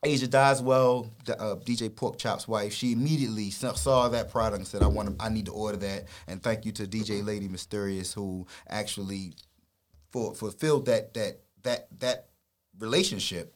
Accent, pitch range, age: American, 105-130 Hz, 30-49